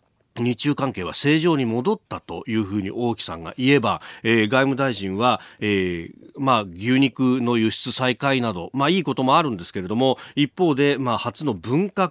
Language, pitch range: Japanese, 110-185 Hz